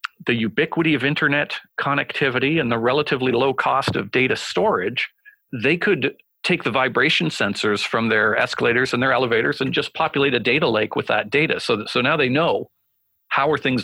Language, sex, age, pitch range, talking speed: English, male, 40-59, 120-150 Hz, 180 wpm